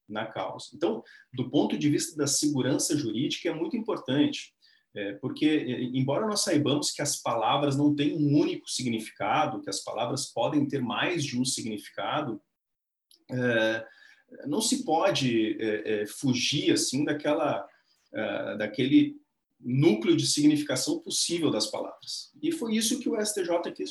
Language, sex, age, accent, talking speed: Portuguese, male, 40-59, Brazilian, 135 wpm